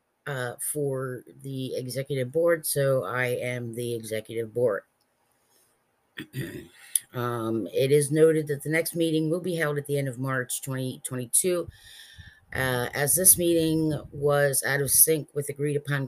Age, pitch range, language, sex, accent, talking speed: 30-49, 135-160 Hz, English, female, American, 140 wpm